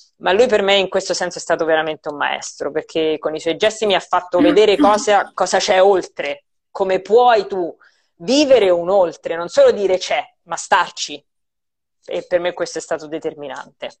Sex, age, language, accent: female, 30-49, Italian, native